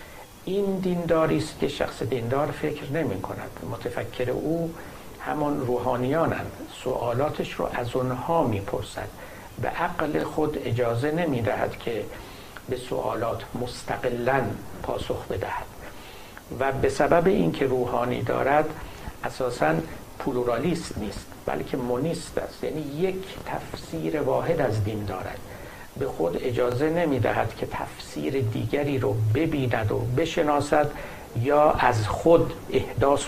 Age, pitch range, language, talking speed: 60-79, 125-155 Hz, Persian, 115 wpm